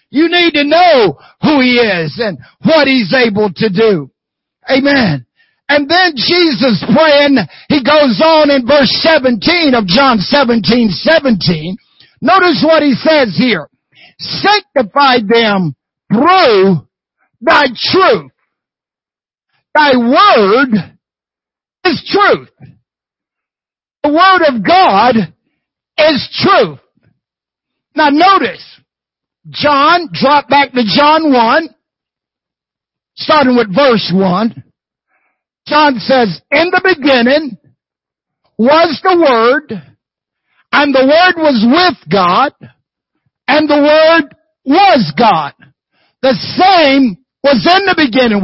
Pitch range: 230-315 Hz